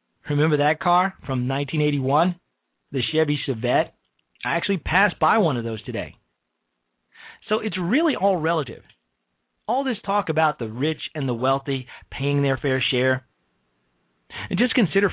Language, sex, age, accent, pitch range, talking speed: English, male, 40-59, American, 125-180 Hz, 145 wpm